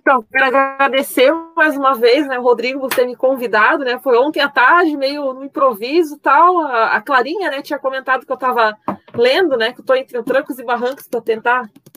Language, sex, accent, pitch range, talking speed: Portuguese, female, Brazilian, 235-290 Hz, 220 wpm